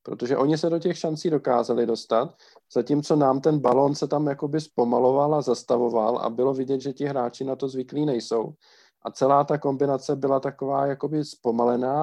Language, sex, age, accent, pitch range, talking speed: Czech, male, 40-59, native, 115-135 Hz, 180 wpm